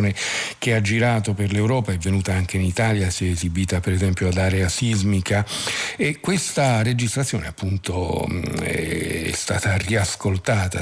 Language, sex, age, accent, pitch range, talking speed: Italian, male, 50-69, native, 95-115 Hz, 140 wpm